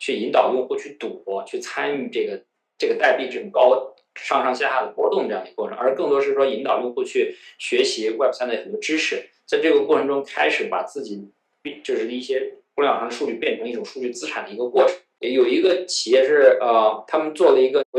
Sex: male